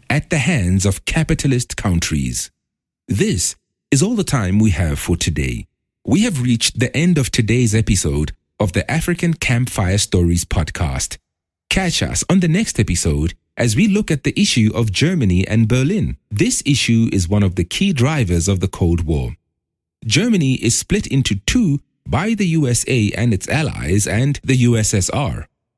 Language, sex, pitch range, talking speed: English, male, 100-145 Hz, 165 wpm